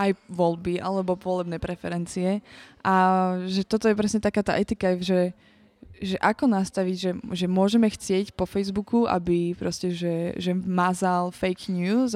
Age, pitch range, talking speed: 20-39, 180-200 Hz, 150 wpm